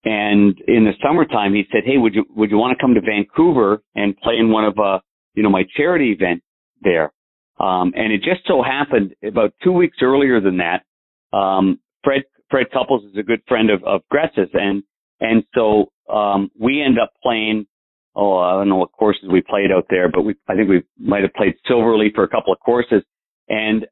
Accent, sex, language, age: American, male, English, 50-69